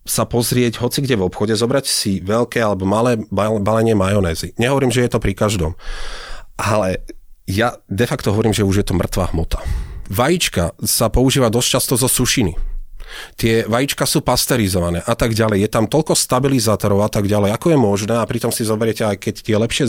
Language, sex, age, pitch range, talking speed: Slovak, male, 30-49, 100-120 Hz, 185 wpm